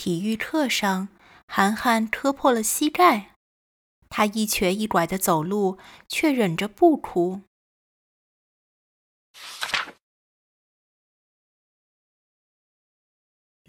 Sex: female